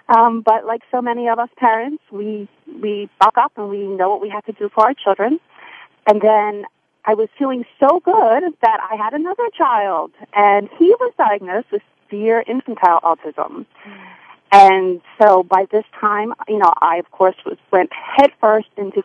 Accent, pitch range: American, 195-235 Hz